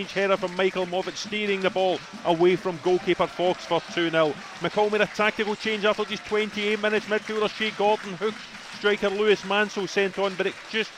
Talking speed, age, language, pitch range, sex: 185 wpm, 30-49, English, 180-210 Hz, male